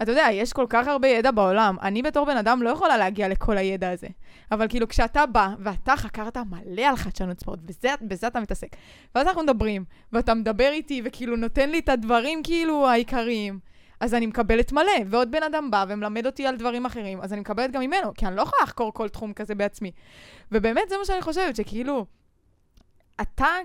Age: 20-39